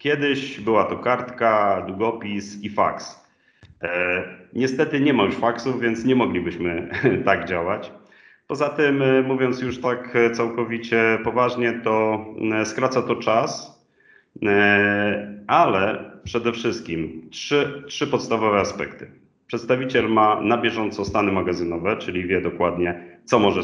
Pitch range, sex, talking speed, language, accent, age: 95-125 Hz, male, 115 wpm, Polish, native, 40-59